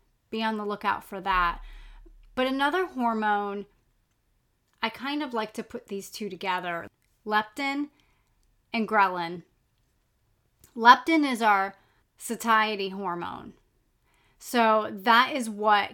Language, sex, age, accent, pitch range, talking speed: English, female, 30-49, American, 195-245 Hz, 115 wpm